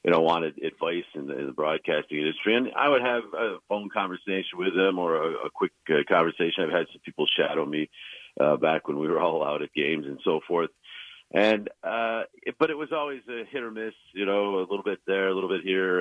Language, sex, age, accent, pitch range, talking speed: English, male, 50-69, American, 95-150 Hz, 230 wpm